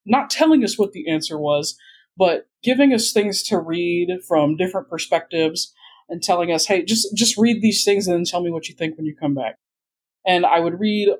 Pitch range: 160-205 Hz